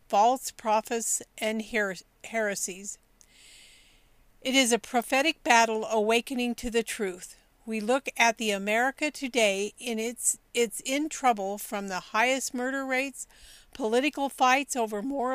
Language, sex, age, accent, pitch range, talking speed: English, female, 50-69, American, 215-260 Hz, 130 wpm